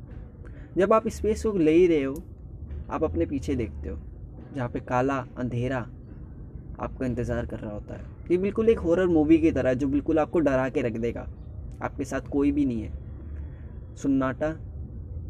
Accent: native